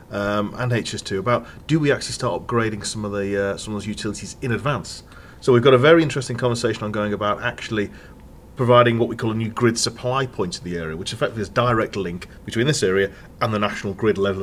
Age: 40-59